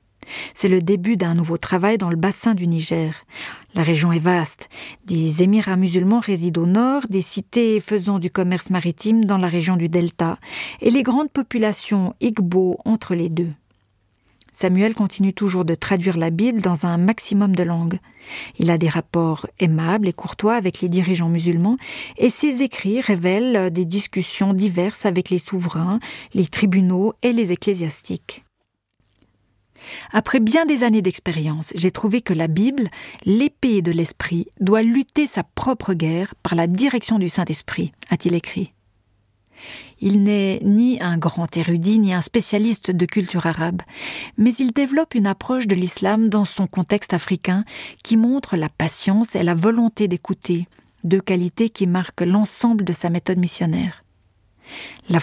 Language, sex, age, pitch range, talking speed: French, female, 40-59, 170-215 Hz, 155 wpm